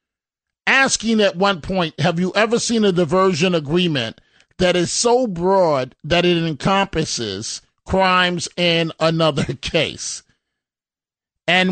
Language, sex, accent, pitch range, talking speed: English, male, American, 160-205 Hz, 120 wpm